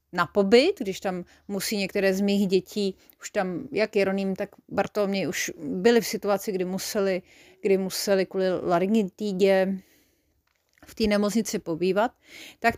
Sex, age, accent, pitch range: female, 30-49, native, 185-220 Hz